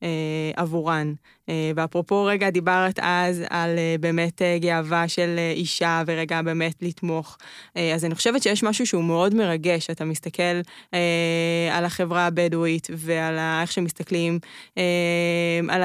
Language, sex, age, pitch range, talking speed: Hebrew, female, 20-39, 165-190 Hz, 115 wpm